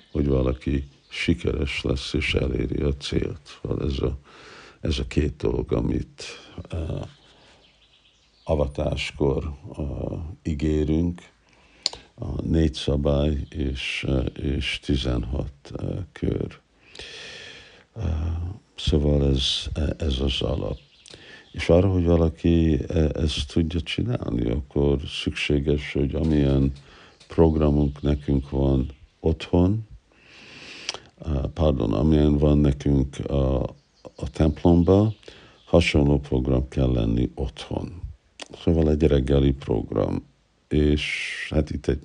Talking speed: 90 wpm